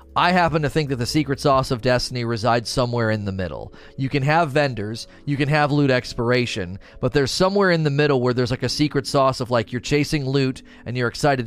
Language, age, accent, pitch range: English, 30-49, American, 110-145 Hz